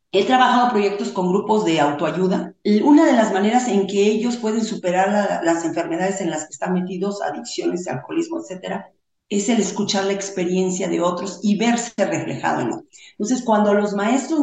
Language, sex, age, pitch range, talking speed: Spanish, female, 40-59, 190-250 Hz, 180 wpm